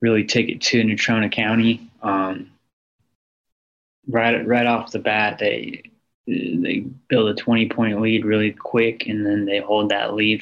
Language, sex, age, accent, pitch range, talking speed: English, male, 20-39, American, 105-115 Hz, 150 wpm